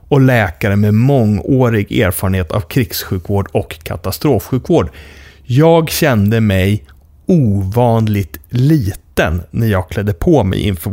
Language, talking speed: English, 110 wpm